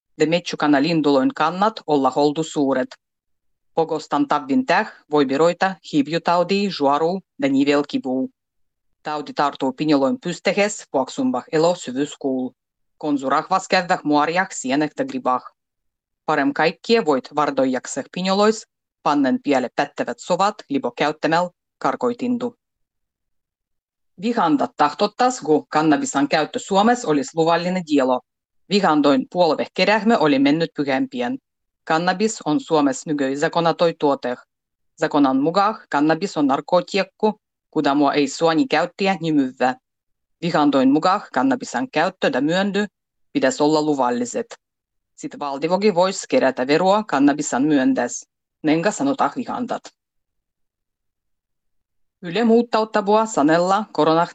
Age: 30-49